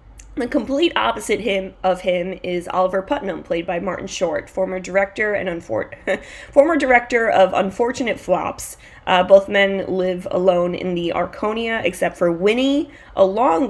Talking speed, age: 150 wpm, 20-39